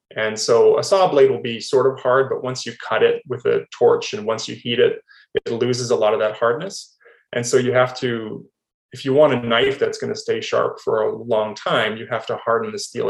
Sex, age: male, 20-39